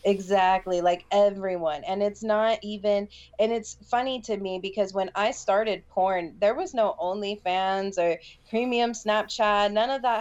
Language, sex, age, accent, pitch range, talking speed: English, female, 20-39, American, 180-215 Hz, 165 wpm